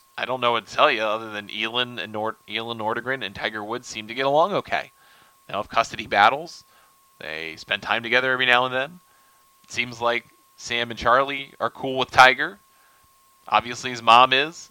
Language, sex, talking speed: English, male, 195 wpm